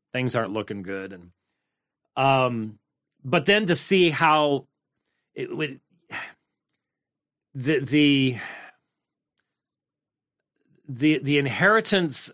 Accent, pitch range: American, 120-150 Hz